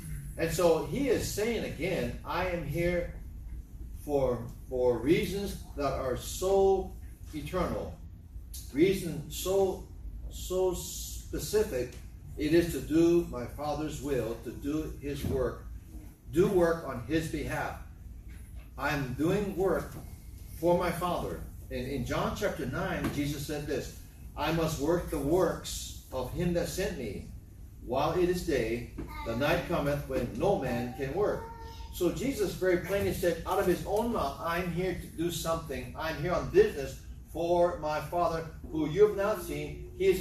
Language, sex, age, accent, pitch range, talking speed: English, male, 60-79, American, 120-180 Hz, 150 wpm